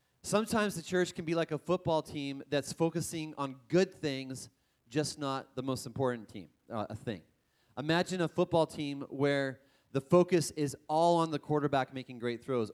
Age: 30-49